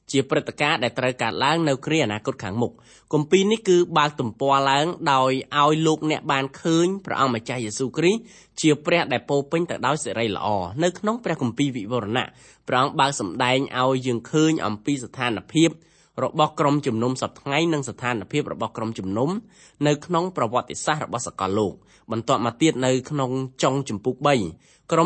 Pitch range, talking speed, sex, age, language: 125-160 Hz, 45 wpm, male, 20-39, English